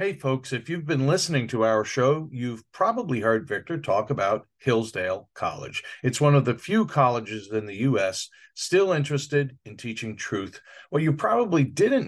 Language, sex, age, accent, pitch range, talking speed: English, male, 50-69, American, 120-185 Hz, 175 wpm